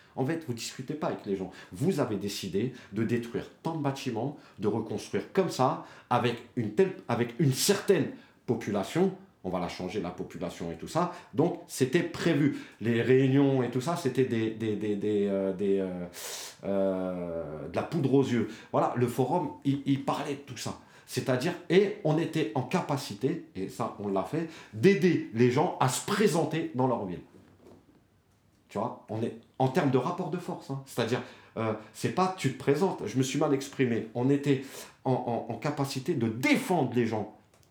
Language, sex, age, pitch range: French, male, 40-59, 105-150 Hz